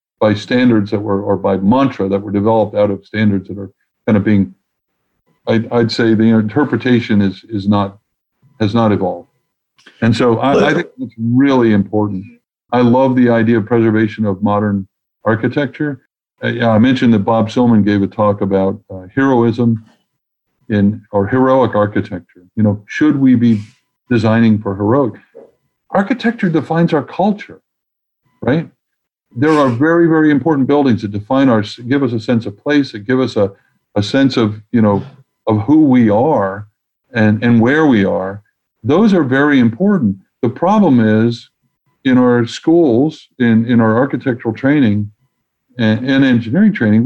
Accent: American